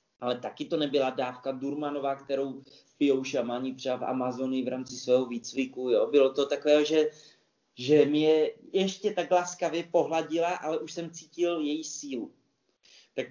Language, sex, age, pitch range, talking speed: Slovak, male, 30-49, 130-165 Hz, 150 wpm